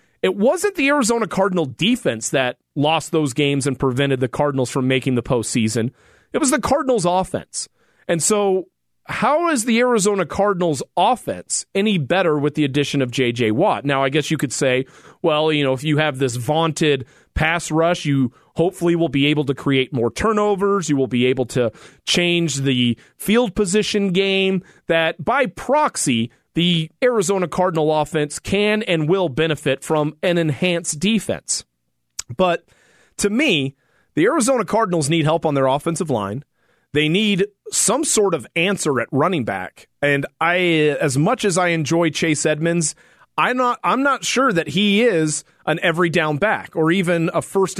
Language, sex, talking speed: English, male, 170 wpm